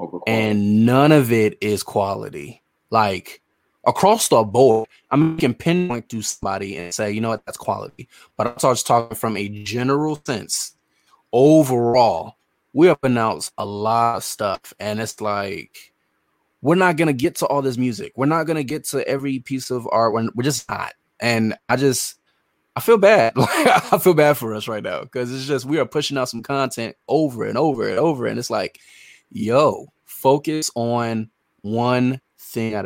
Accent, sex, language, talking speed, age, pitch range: American, male, English, 180 wpm, 20-39, 110-150 Hz